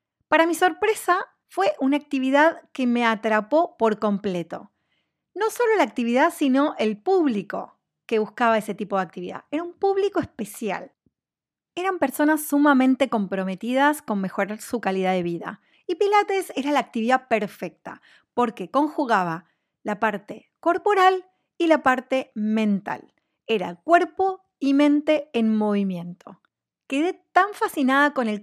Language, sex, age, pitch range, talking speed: Spanish, female, 30-49, 220-320 Hz, 135 wpm